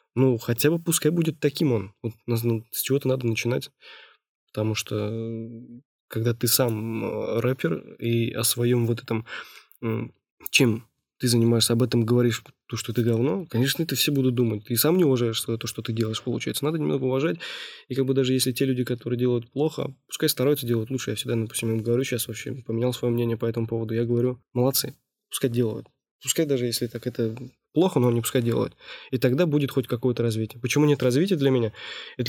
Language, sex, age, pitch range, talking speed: Russian, male, 20-39, 115-130 Hz, 195 wpm